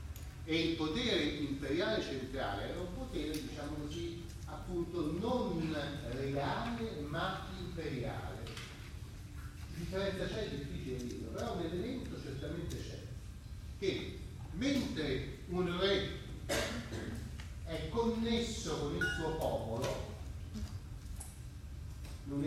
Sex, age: male, 40-59